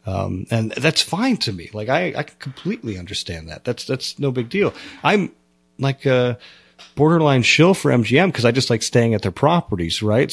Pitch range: 100-130 Hz